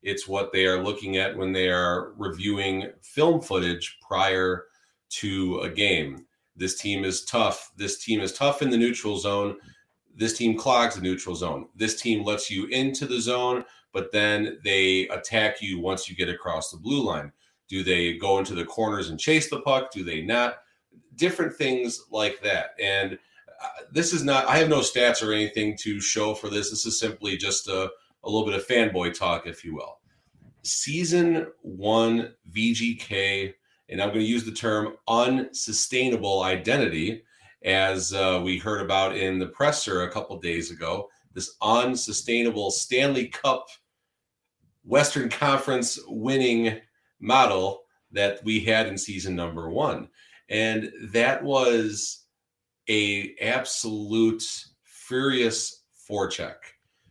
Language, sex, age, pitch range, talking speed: English, male, 30-49, 95-120 Hz, 150 wpm